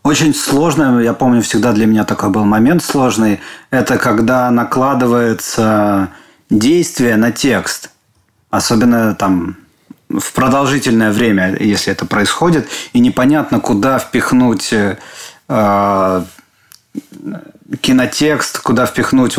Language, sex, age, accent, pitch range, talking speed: Russian, male, 30-49, native, 110-140 Hz, 100 wpm